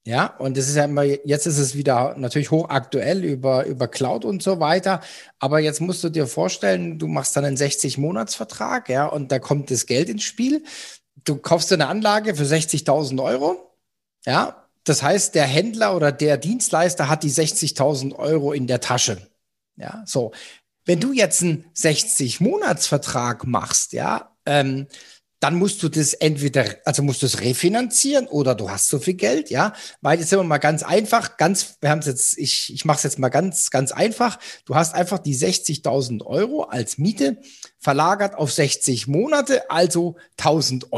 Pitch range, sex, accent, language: 140-190 Hz, male, German, German